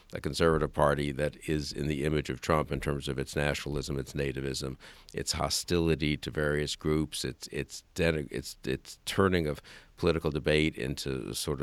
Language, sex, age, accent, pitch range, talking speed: English, male, 50-69, American, 75-95 Hz, 165 wpm